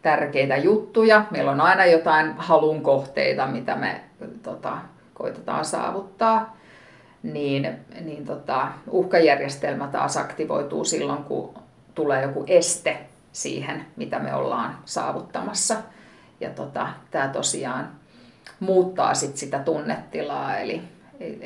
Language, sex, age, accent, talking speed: Finnish, female, 50-69, native, 105 wpm